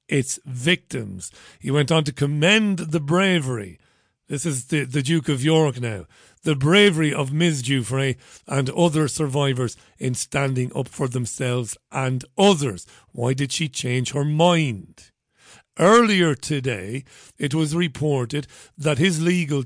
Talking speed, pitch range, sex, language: 140 wpm, 135-170 Hz, male, English